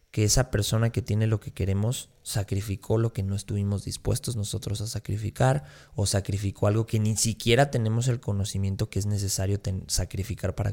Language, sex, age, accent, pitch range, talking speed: Spanish, male, 20-39, Mexican, 95-115 Hz, 175 wpm